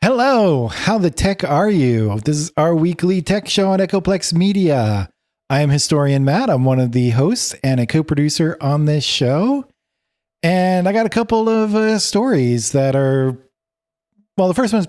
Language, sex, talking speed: English, male, 175 wpm